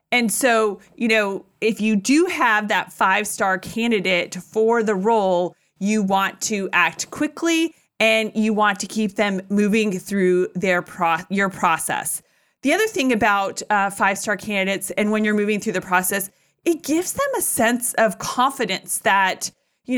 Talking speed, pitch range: 160 wpm, 195-245 Hz